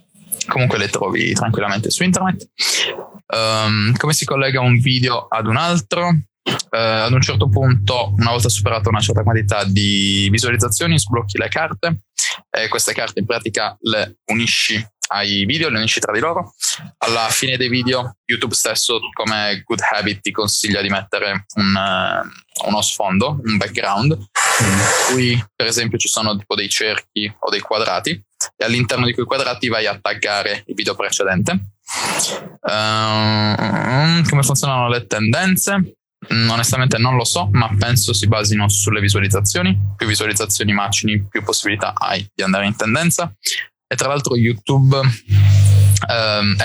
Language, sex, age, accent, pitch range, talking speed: Italian, male, 20-39, native, 105-125 Hz, 150 wpm